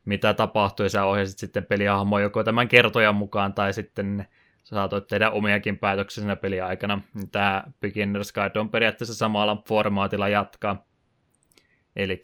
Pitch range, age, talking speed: 100-110 Hz, 20-39, 140 wpm